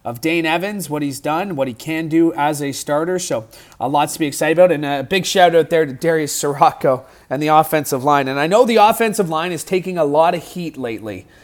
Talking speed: 250 wpm